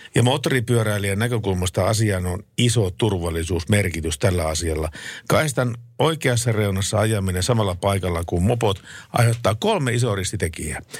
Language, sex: Finnish, male